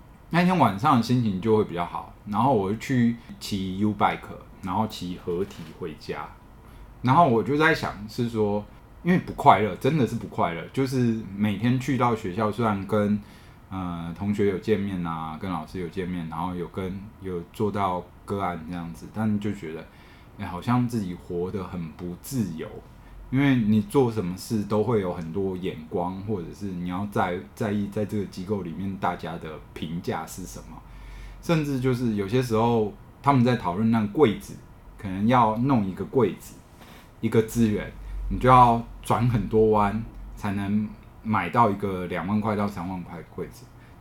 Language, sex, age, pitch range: Chinese, male, 20-39, 90-115 Hz